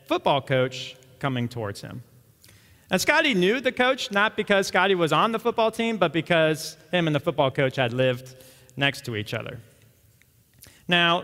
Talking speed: 170 wpm